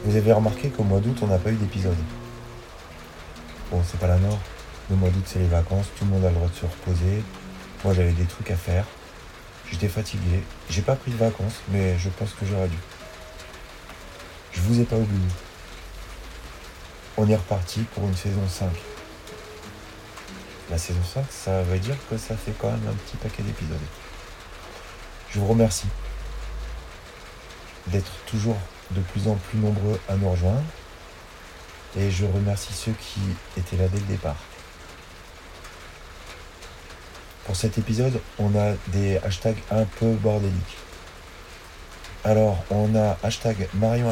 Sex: male